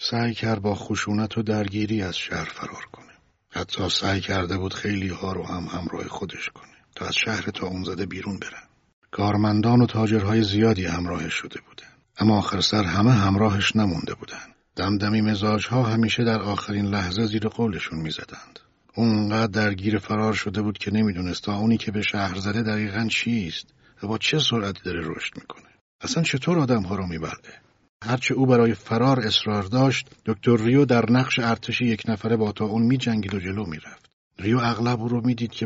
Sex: male